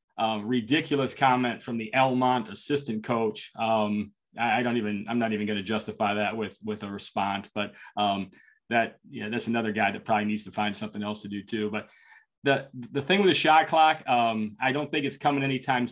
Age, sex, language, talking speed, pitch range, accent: 30-49, male, English, 210 wpm, 110-125 Hz, American